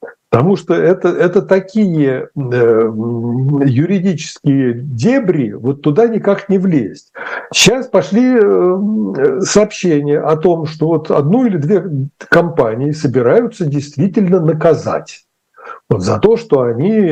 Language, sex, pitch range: Russian, male, 140-195 Hz